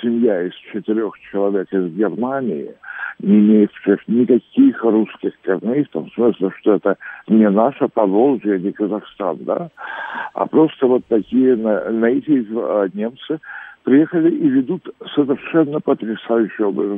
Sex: male